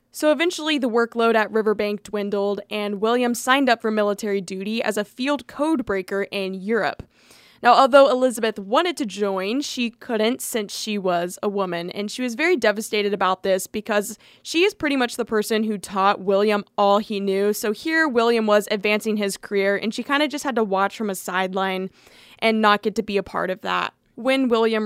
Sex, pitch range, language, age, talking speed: female, 200-240 Hz, English, 20-39, 200 wpm